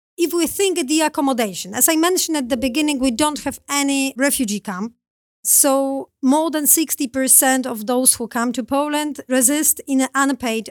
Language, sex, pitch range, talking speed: English, female, 230-275 Hz, 175 wpm